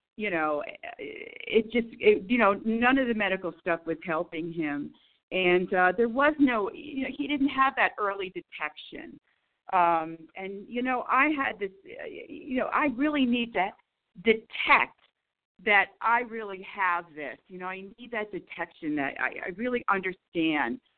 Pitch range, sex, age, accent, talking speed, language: 165-235 Hz, female, 50-69, American, 165 wpm, English